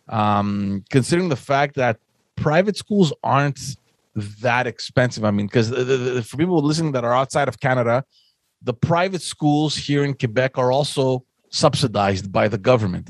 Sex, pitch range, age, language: male, 110-145 Hz, 30-49, English